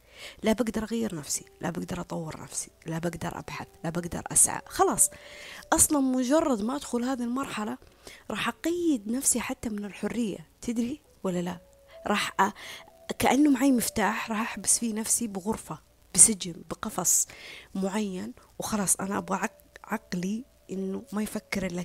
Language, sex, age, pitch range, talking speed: Arabic, female, 20-39, 185-240 Hz, 140 wpm